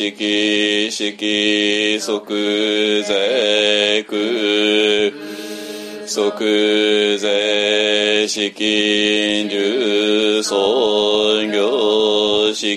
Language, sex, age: Japanese, male, 40-59